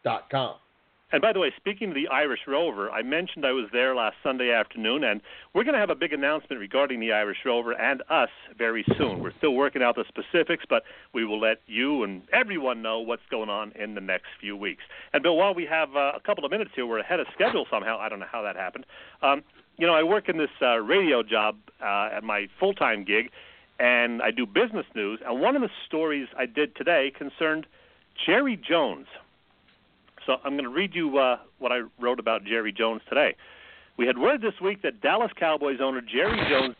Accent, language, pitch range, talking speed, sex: American, English, 120-175 Hz, 215 wpm, male